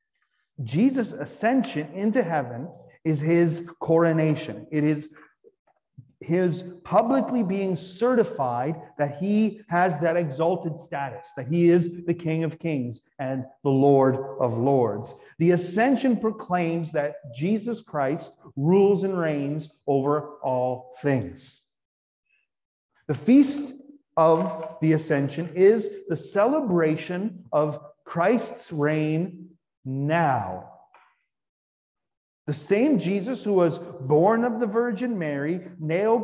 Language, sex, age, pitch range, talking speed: English, male, 40-59, 150-210 Hz, 110 wpm